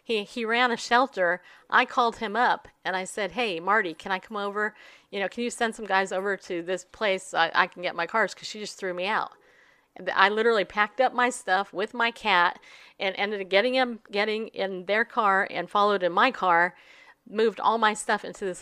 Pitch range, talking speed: 180-240 Hz, 225 wpm